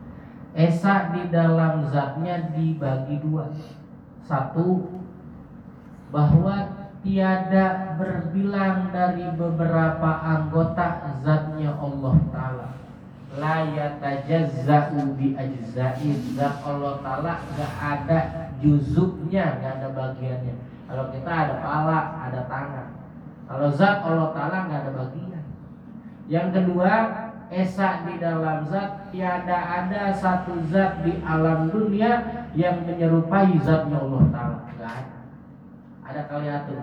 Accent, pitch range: native, 145-180 Hz